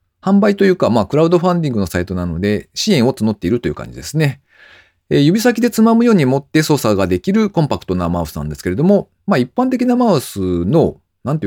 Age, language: 40-59, Japanese